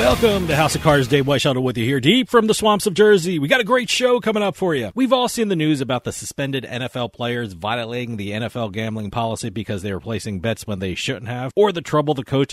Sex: male